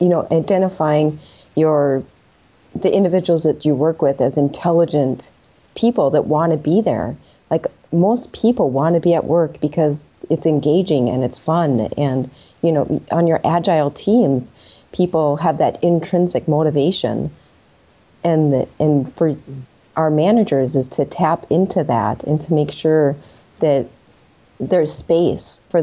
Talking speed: 145 wpm